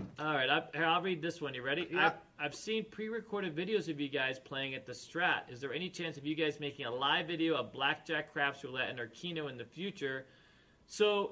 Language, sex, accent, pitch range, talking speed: English, male, American, 140-180 Hz, 230 wpm